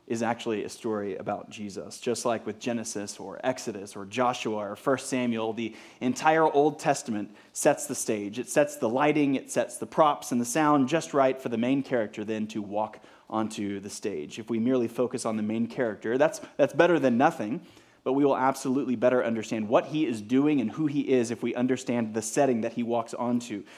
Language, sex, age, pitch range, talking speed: English, male, 30-49, 115-145 Hz, 210 wpm